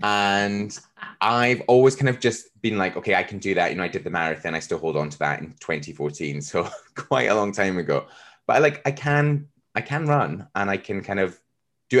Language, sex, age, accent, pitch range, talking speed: English, male, 20-39, British, 90-130 Hz, 230 wpm